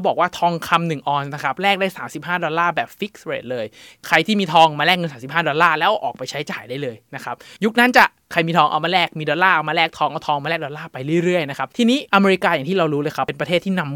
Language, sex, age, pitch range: Thai, male, 20-39, 145-190 Hz